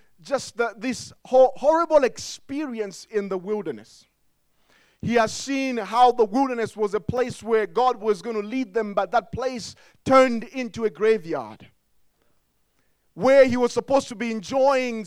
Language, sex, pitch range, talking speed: English, male, 210-260 Hz, 145 wpm